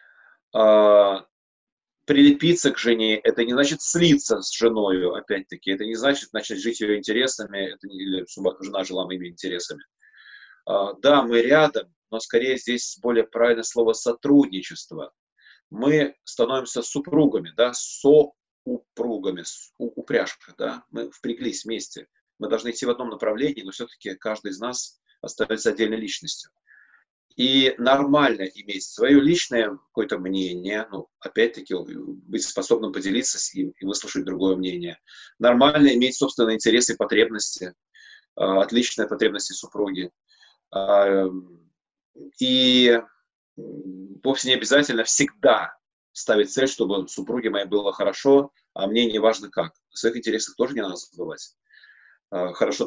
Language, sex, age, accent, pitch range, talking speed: Russian, male, 30-49, native, 100-140 Hz, 125 wpm